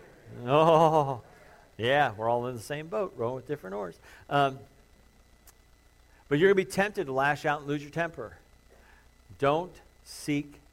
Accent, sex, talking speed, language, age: American, male, 155 wpm, English, 50-69